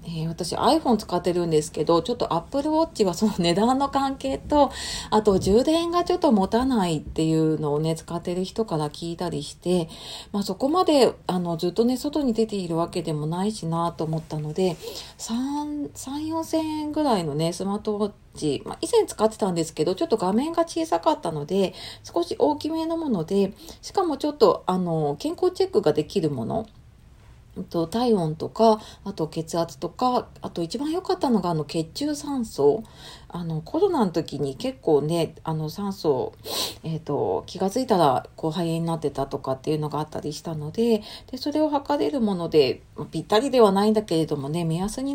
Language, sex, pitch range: Japanese, female, 165-275 Hz